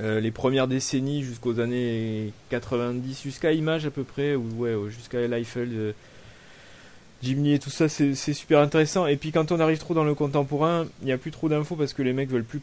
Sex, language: male, French